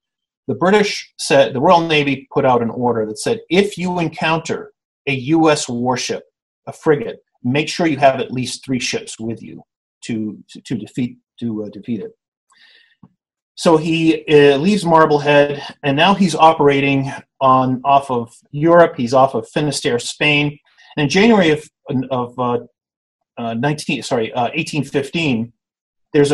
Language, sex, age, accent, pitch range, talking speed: English, male, 30-49, American, 130-170 Hz, 155 wpm